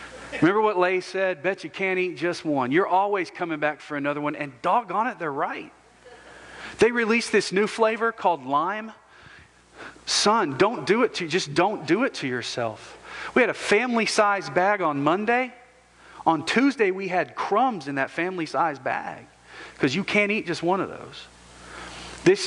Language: English